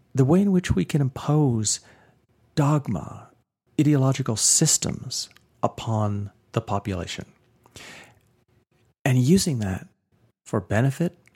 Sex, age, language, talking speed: male, 40-59, English, 95 wpm